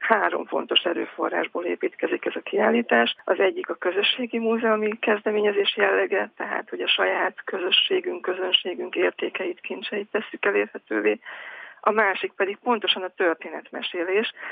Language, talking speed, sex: Hungarian, 125 wpm, female